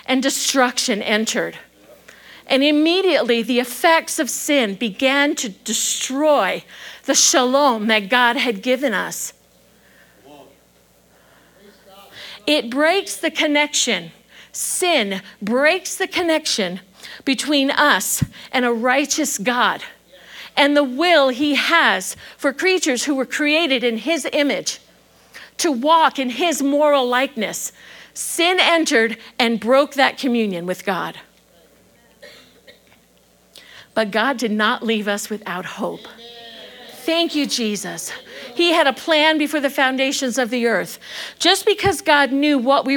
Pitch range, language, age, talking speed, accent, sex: 225-295 Hz, English, 50-69, 120 wpm, American, female